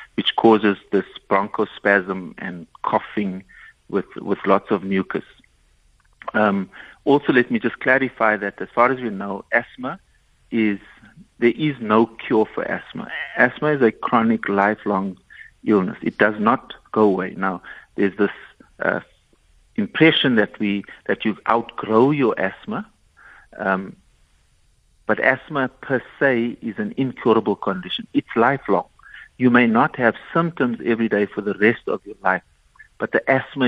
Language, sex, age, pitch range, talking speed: English, male, 60-79, 100-130 Hz, 145 wpm